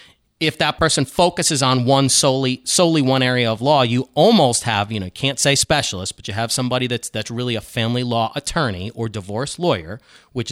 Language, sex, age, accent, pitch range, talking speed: English, male, 30-49, American, 125-190 Hz, 200 wpm